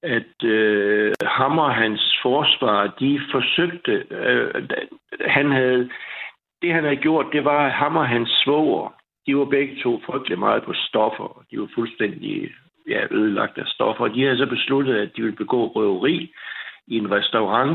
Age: 60-79